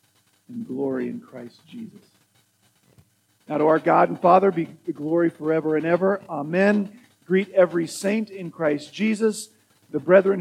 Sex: male